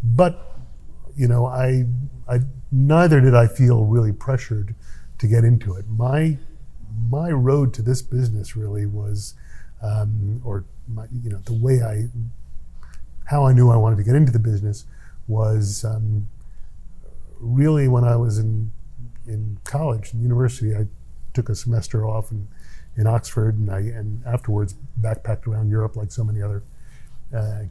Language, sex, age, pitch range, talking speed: English, male, 50-69, 105-120 Hz, 155 wpm